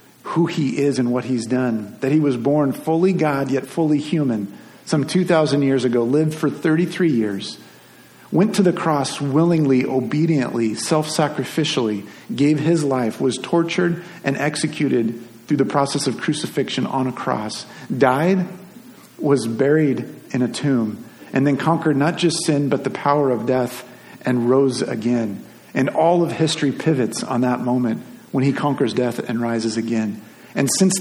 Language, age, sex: English, 50-69, male